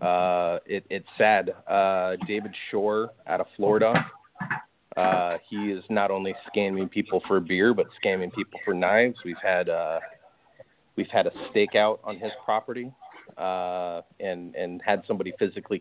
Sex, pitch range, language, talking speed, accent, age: male, 95-115 Hz, English, 150 wpm, American, 30-49